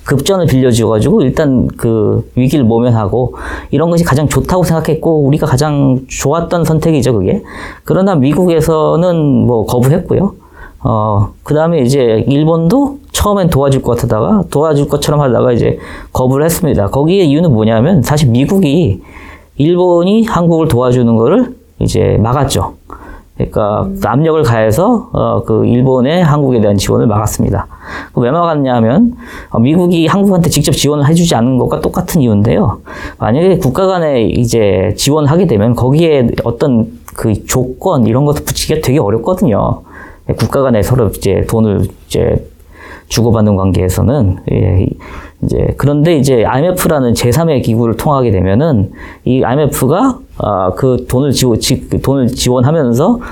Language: Korean